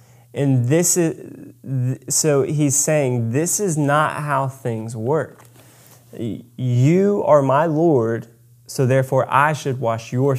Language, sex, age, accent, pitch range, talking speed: English, male, 20-39, American, 120-155 Hz, 125 wpm